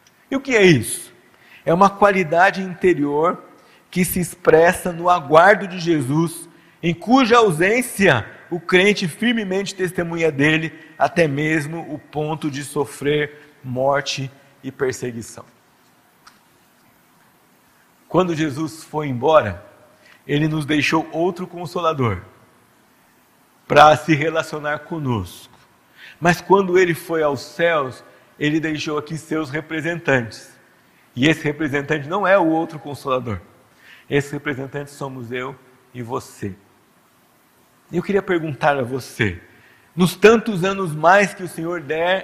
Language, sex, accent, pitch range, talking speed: Portuguese, male, Brazilian, 145-180 Hz, 120 wpm